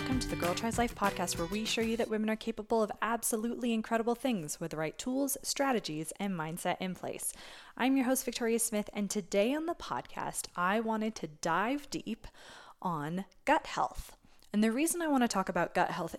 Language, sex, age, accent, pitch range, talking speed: English, female, 20-39, American, 175-230 Hz, 210 wpm